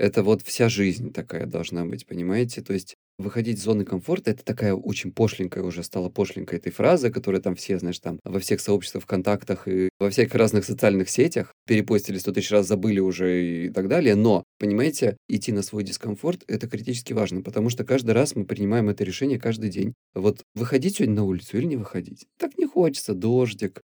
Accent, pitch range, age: native, 95-125 Hz, 30-49